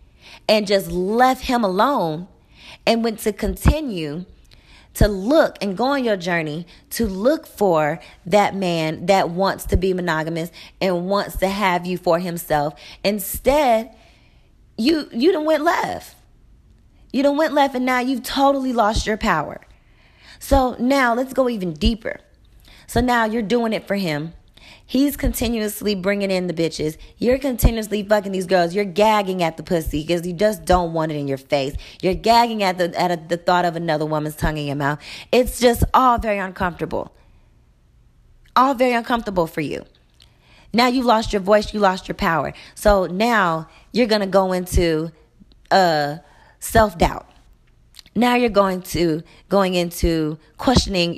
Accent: American